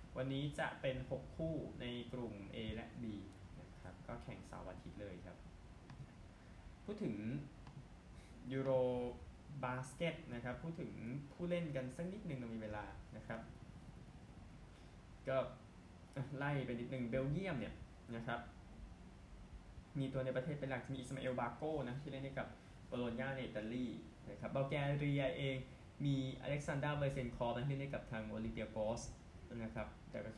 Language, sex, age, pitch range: Thai, male, 10-29, 105-135 Hz